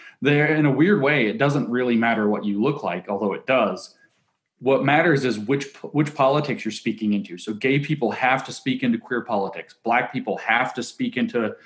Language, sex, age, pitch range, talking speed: English, male, 30-49, 105-140 Hz, 205 wpm